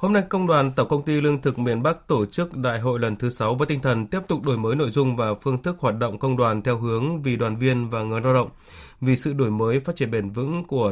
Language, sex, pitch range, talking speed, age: Vietnamese, male, 115-145 Hz, 285 wpm, 20-39